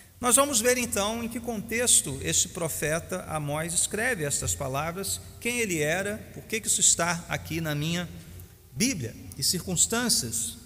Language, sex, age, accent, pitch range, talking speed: Portuguese, male, 40-59, Brazilian, 135-200 Hz, 145 wpm